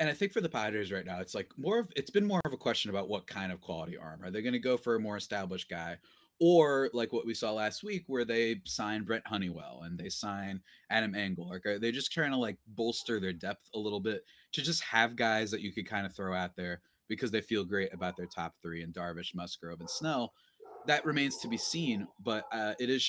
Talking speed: 250 wpm